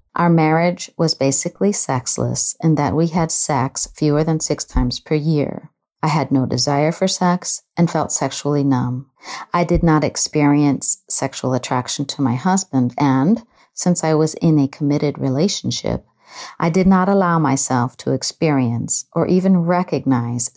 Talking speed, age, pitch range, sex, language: 155 wpm, 50-69, 135-170 Hz, female, English